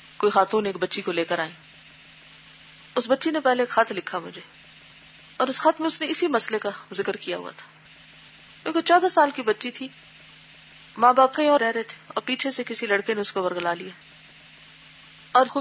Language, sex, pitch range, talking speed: Urdu, female, 200-245 Hz, 80 wpm